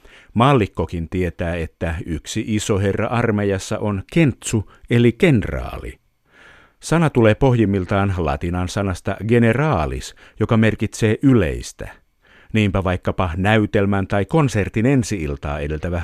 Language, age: Finnish, 50-69